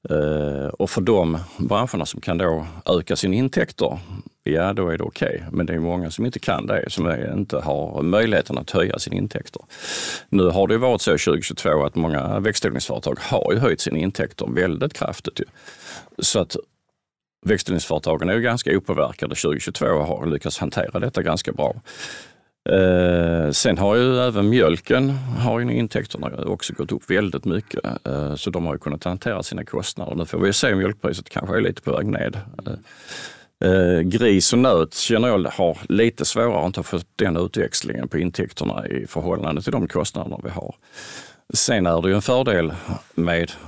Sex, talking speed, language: male, 175 wpm, Swedish